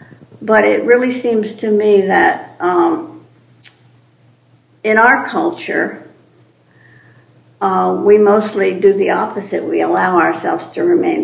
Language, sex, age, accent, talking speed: English, female, 60-79, American, 115 wpm